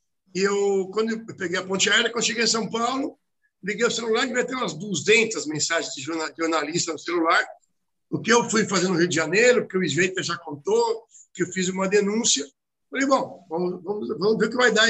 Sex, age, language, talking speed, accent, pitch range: male, 60-79, Portuguese, 230 wpm, Brazilian, 175-220 Hz